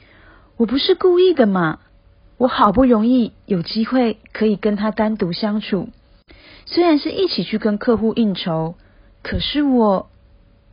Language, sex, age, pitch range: Chinese, female, 40-59, 160-230 Hz